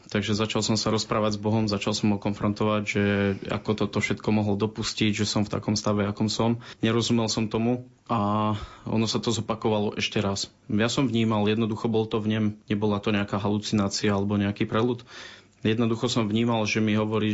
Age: 20-39